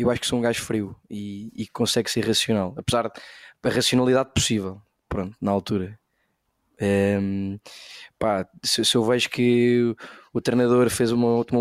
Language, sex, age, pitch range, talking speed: Portuguese, male, 20-39, 105-125 Hz, 160 wpm